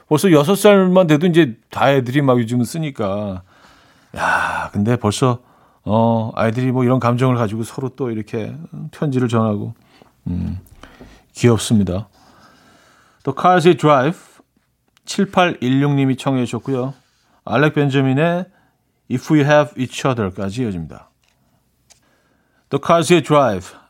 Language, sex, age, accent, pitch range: Korean, male, 40-59, native, 115-160 Hz